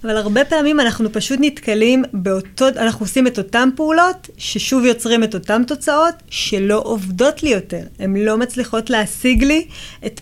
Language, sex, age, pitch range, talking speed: Hebrew, female, 20-39, 200-245 Hz, 160 wpm